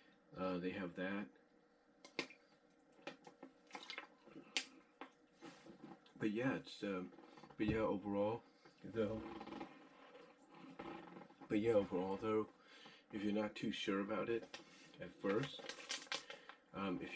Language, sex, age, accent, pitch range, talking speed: English, male, 40-59, American, 95-120 Hz, 95 wpm